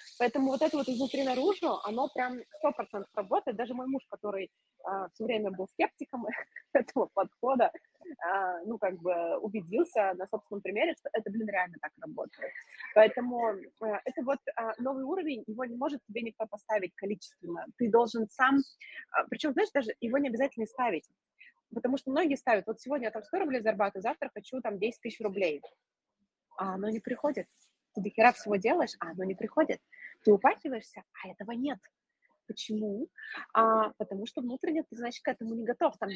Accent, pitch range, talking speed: native, 205-270 Hz, 175 wpm